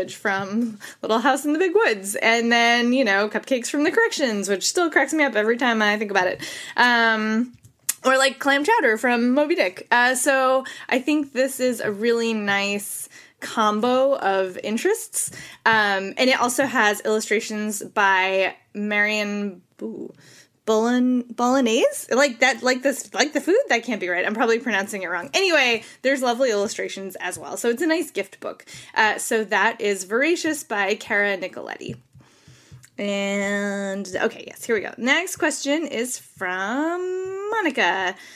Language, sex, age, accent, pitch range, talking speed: English, female, 20-39, American, 200-265 Hz, 160 wpm